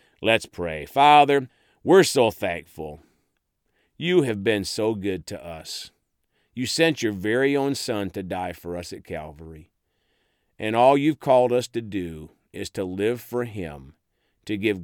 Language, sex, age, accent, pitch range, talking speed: English, male, 50-69, American, 95-140 Hz, 160 wpm